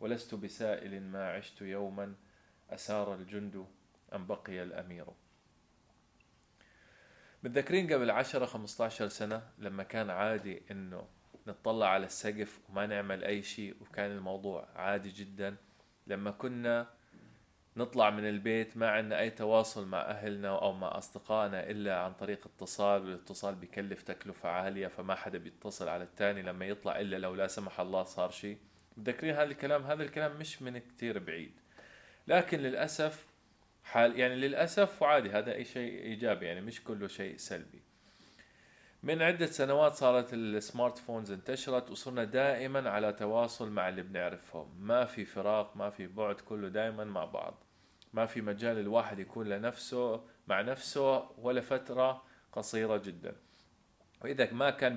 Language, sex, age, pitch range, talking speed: Arabic, male, 20-39, 100-125 Hz, 140 wpm